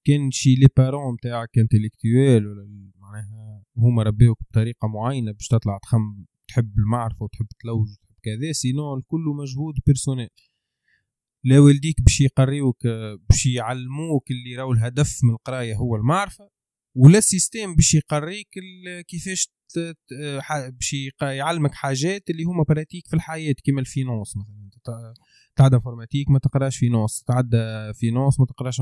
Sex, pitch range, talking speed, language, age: male, 115-155 Hz, 135 wpm, Arabic, 20-39